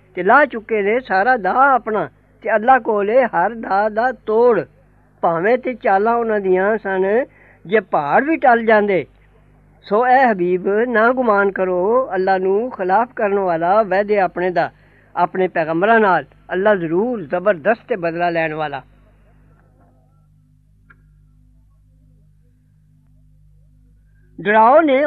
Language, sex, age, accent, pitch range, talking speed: English, female, 50-69, Indian, 185-245 Hz, 115 wpm